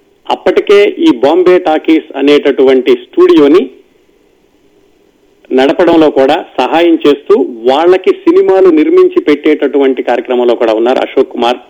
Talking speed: 95 wpm